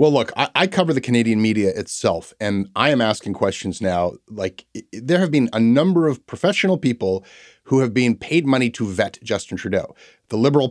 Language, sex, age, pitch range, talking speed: English, male, 30-49, 105-130 Hz, 195 wpm